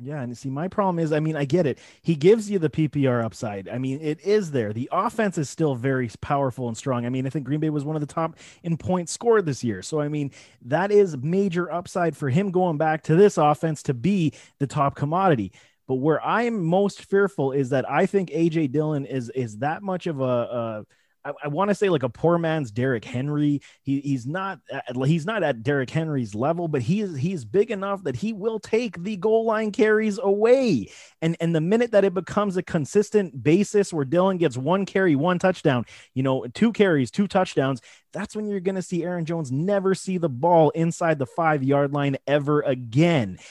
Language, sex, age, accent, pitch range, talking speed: English, male, 30-49, American, 130-175 Hz, 225 wpm